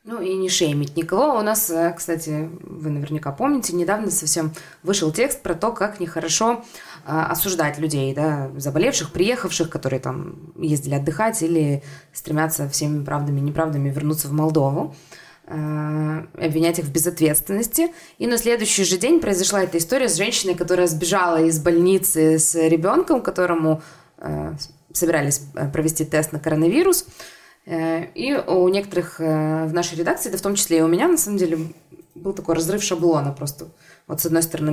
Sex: female